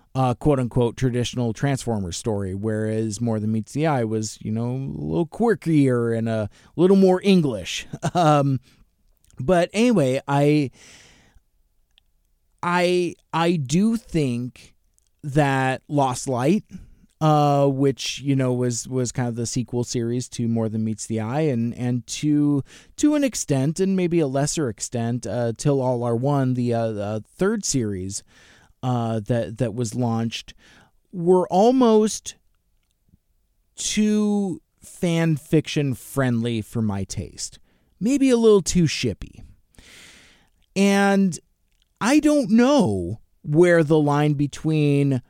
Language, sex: English, male